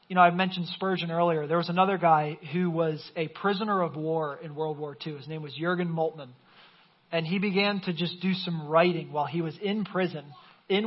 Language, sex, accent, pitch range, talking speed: English, male, American, 165-195 Hz, 215 wpm